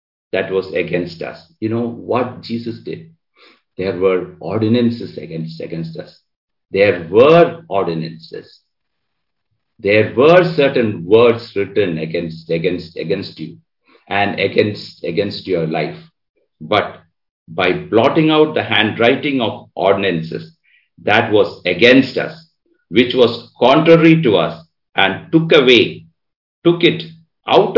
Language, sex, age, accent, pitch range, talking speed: English, male, 50-69, Indian, 105-160 Hz, 120 wpm